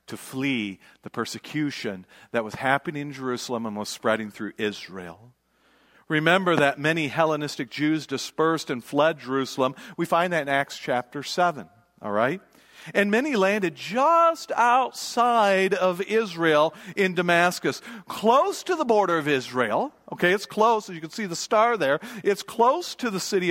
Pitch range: 150-205 Hz